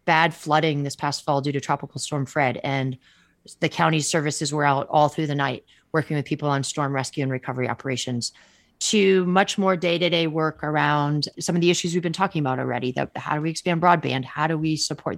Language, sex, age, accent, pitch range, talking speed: English, female, 30-49, American, 140-160 Hz, 210 wpm